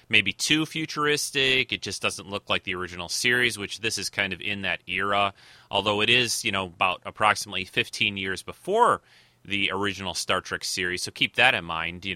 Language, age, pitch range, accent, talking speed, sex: English, 30-49, 100-135 Hz, American, 195 wpm, male